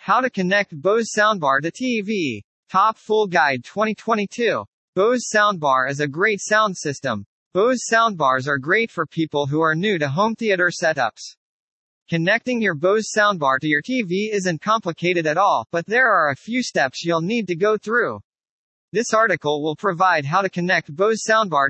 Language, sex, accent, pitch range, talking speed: English, male, American, 160-215 Hz, 170 wpm